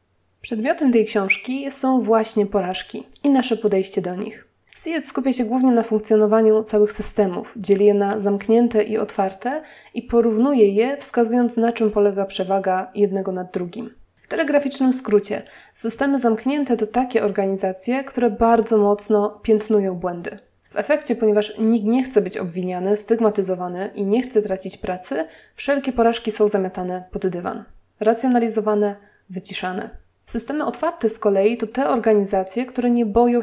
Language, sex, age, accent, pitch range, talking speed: Polish, female, 20-39, native, 200-240 Hz, 145 wpm